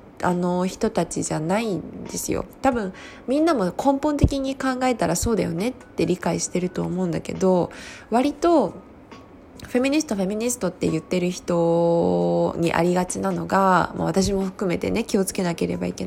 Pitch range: 170-240 Hz